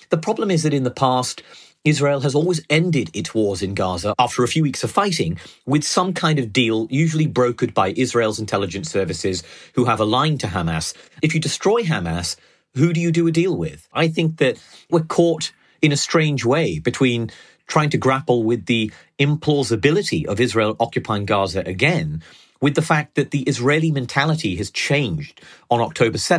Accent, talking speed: British, 185 wpm